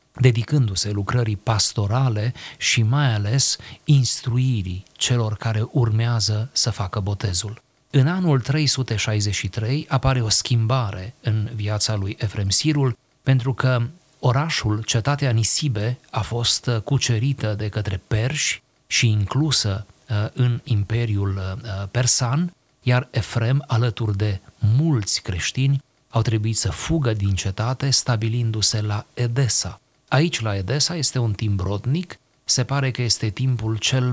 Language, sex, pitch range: Romanian, male, 105-130 Hz